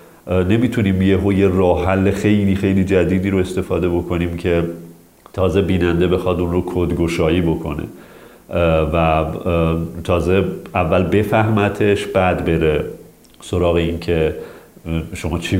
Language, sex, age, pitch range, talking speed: Persian, male, 40-59, 85-110 Hz, 110 wpm